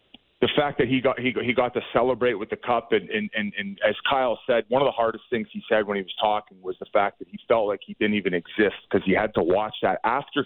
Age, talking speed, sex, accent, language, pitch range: 30-49, 275 wpm, male, American, English, 105-135 Hz